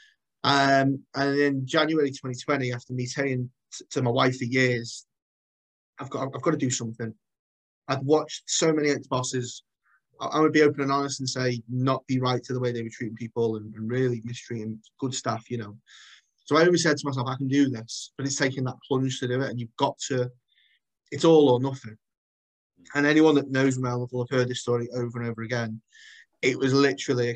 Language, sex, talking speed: English, male, 215 wpm